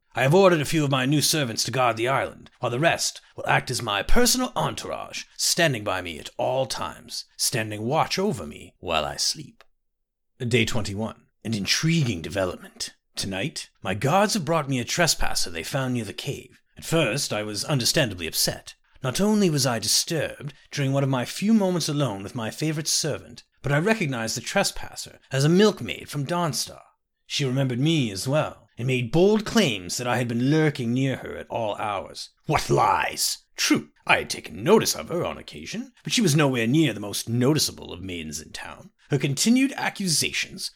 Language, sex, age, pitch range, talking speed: French, male, 30-49, 115-160 Hz, 190 wpm